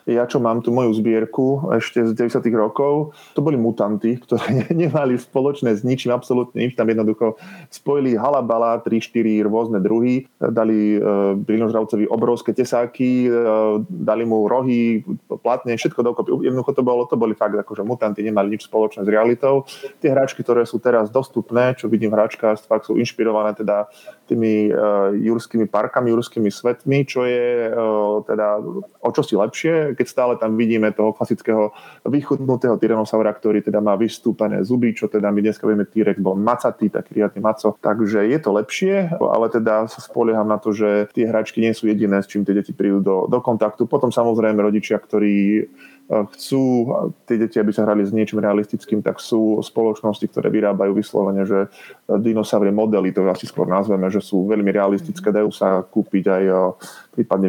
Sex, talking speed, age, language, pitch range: male, 170 wpm, 20-39, Slovak, 105-120 Hz